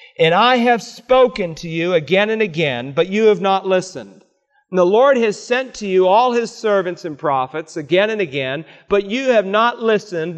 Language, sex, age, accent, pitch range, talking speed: English, male, 40-59, American, 165-230 Hz, 195 wpm